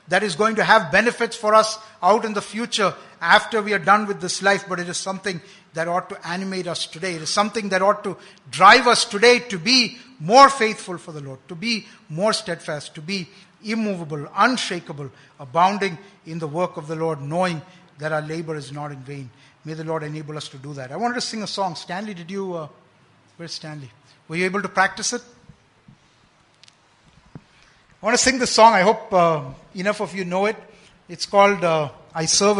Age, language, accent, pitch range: 60-79, English, Indian, 170-210 Hz